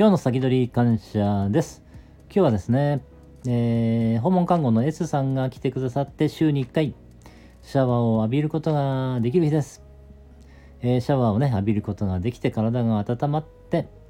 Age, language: 40-59, Japanese